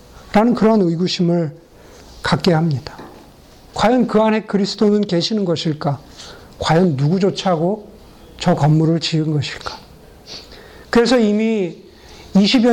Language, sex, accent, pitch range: Korean, male, native, 160-220 Hz